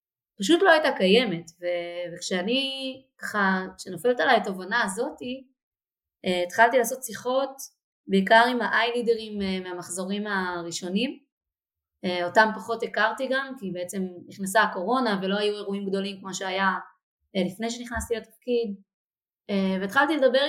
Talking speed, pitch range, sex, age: 110 wpm, 190-235 Hz, female, 20-39